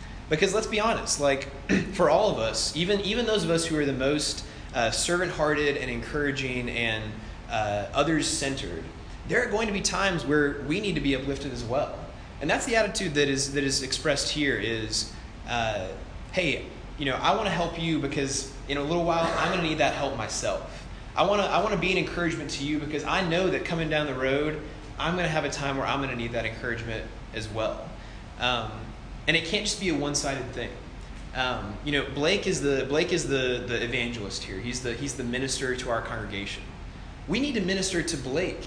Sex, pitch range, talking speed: male, 115-160 Hz, 215 wpm